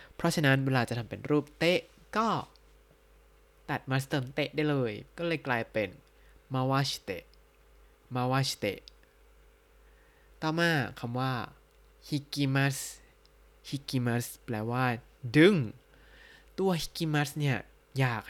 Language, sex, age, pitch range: Thai, male, 20-39, 115-140 Hz